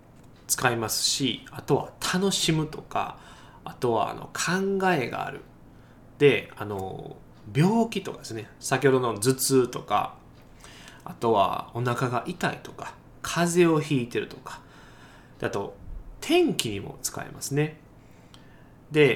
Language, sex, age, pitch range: Japanese, male, 20-39, 115-180 Hz